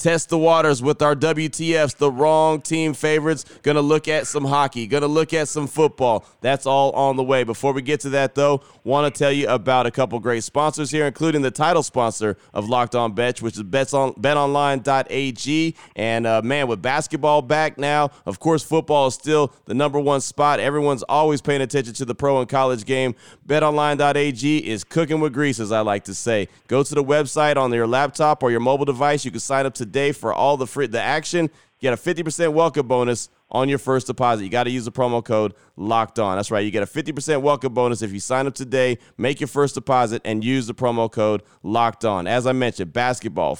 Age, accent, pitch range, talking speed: 30-49, American, 120-145 Hz, 215 wpm